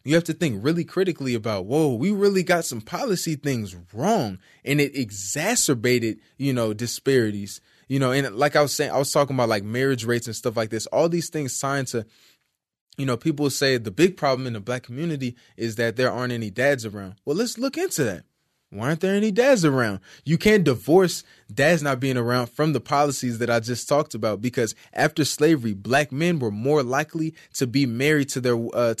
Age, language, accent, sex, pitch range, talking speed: 20-39, English, American, male, 120-150 Hz, 210 wpm